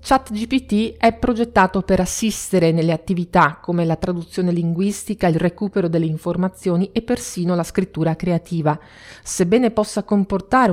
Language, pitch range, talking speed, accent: Italian, 170-220 Hz, 130 wpm, native